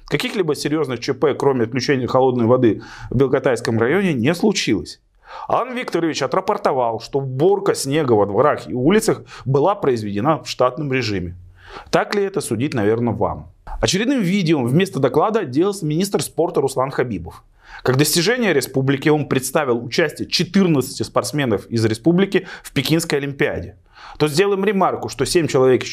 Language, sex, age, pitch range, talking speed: Russian, male, 30-49, 120-180 Hz, 145 wpm